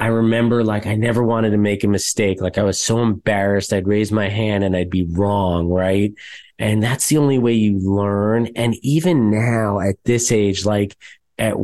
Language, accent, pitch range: English, American, 110-120 Hz